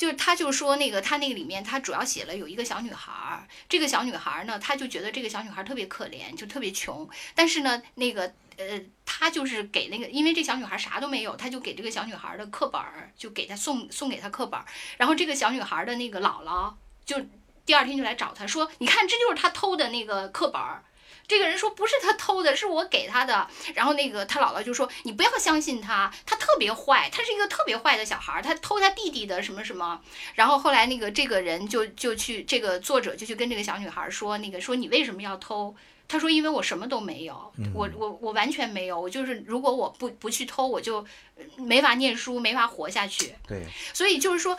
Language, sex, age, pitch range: Chinese, female, 10-29, 220-315 Hz